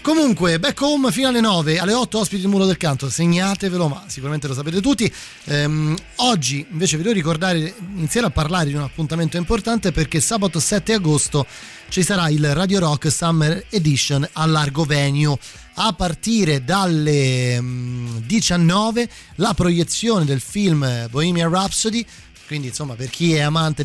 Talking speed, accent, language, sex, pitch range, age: 155 wpm, native, Italian, male, 140-185 Hz, 30-49